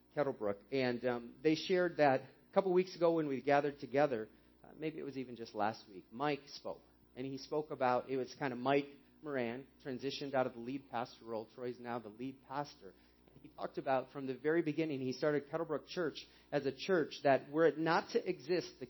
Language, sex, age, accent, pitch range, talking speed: English, male, 30-49, American, 120-160 Hz, 215 wpm